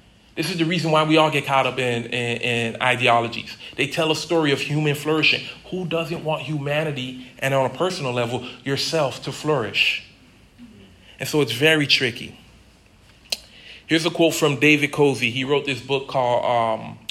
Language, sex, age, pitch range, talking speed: English, male, 40-59, 120-150 Hz, 170 wpm